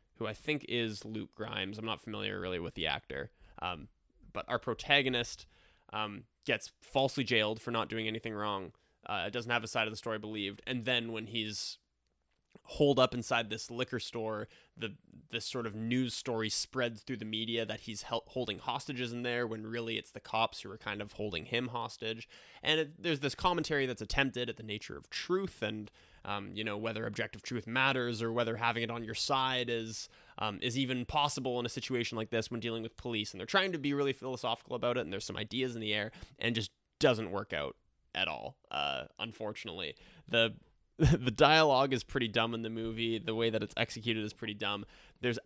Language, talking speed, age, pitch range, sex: English, 210 wpm, 20-39, 110-125 Hz, male